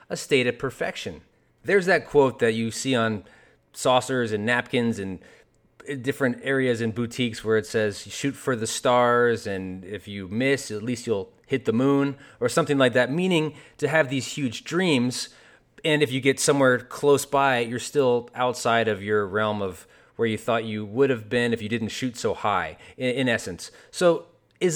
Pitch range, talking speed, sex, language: 120-150 Hz, 185 wpm, male, English